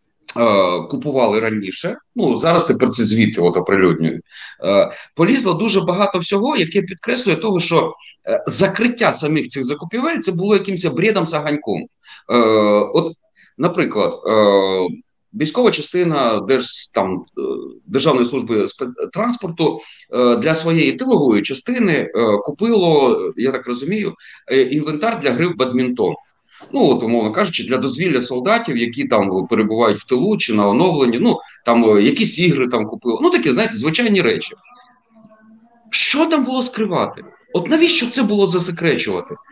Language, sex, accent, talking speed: Ukrainian, male, native, 125 wpm